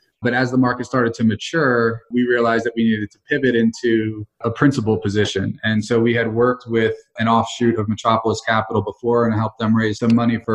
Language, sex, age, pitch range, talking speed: English, male, 20-39, 105-115 Hz, 210 wpm